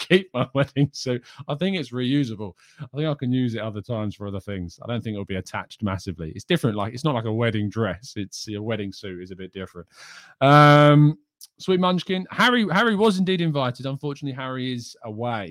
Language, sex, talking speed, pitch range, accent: English, male, 215 wpm, 100-140 Hz, British